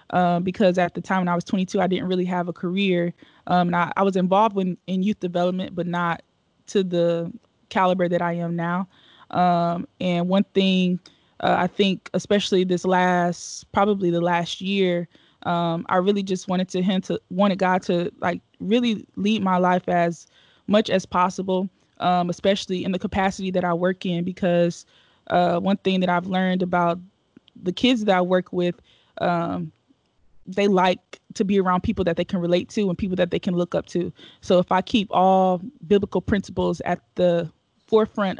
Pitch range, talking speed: 175-190 Hz, 190 wpm